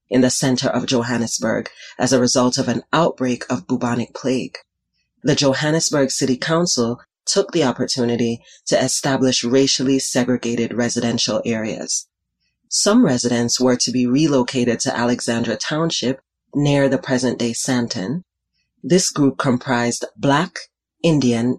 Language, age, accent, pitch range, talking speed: English, 30-49, American, 120-140 Hz, 125 wpm